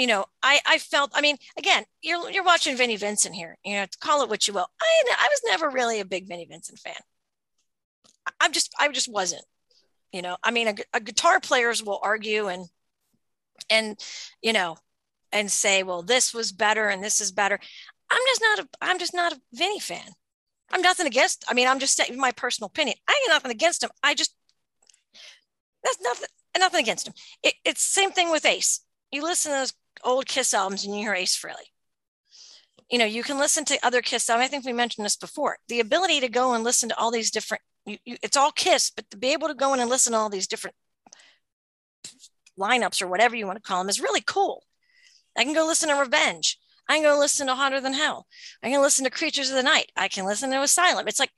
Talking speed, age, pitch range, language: 225 wpm, 40-59, 210-315 Hz, English